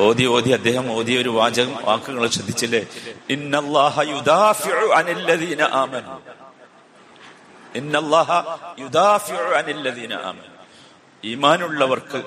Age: 50-69